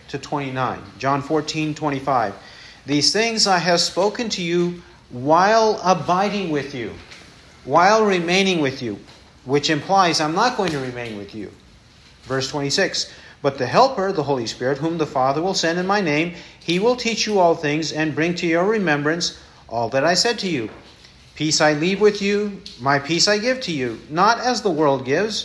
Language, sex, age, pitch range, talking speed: English, male, 50-69, 145-195 Hz, 185 wpm